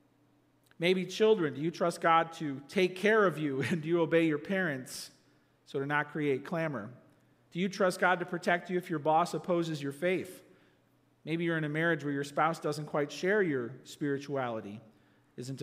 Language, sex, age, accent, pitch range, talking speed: English, male, 40-59, American, 150-220 Hz, 190 wpm